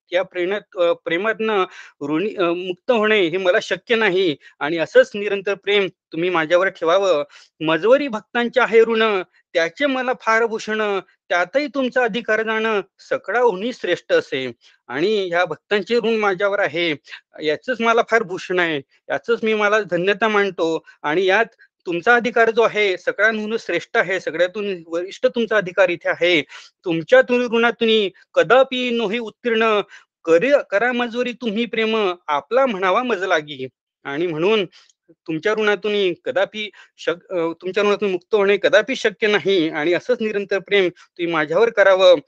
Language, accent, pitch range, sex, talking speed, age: Marathi, native, 175-230 Hz, male, 80 wpm, 30-49